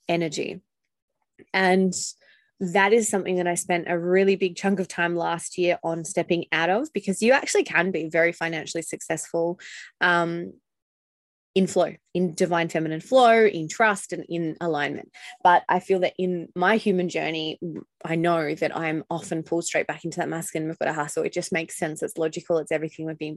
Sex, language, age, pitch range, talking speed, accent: female, English, 20-39, 175-210 Hz, 185 wpm, Australian